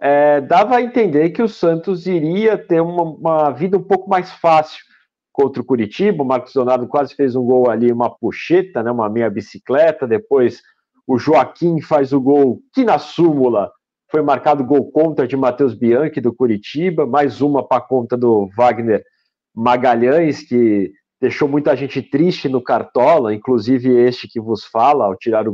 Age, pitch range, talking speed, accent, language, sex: 50-69, 130-190 Hz, 170 wpm, Brazilian, Portuguese, male